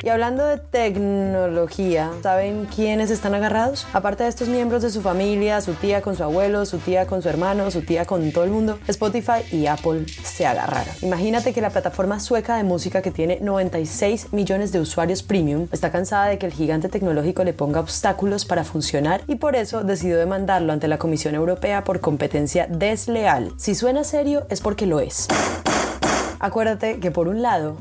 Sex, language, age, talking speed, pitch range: female, Spanish, 20-39, 185 wpm, 170-215 Hz